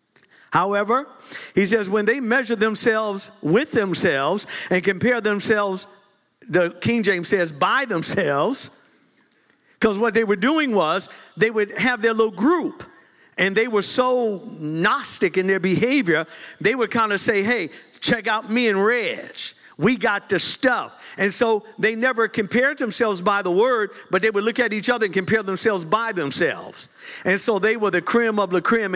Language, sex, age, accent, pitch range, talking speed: English, male, 50-69, American, 200-240 Hz, 170 wpm